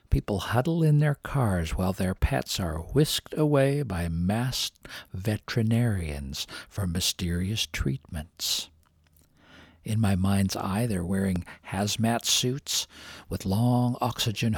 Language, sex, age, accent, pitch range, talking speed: English, male, 60-79, American, 95-125 Hz, 115 wpm